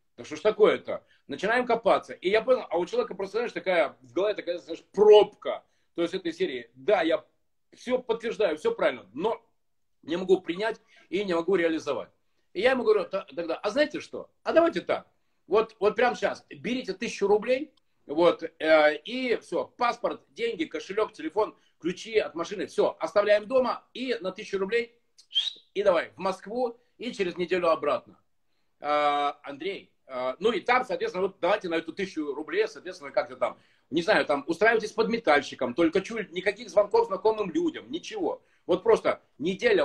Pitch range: 165-255 Hz